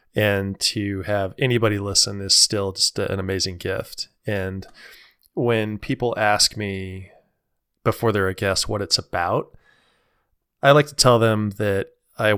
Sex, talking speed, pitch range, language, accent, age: male, 145 wpm, 95-110 Hz, English, American, 20-39